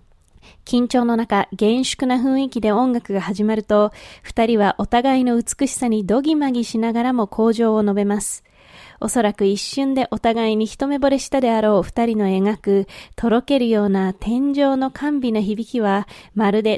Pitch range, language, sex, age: 210-265 Hz, Japanese, female, 20-39